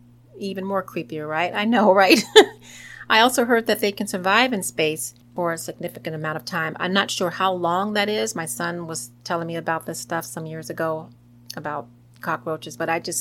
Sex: female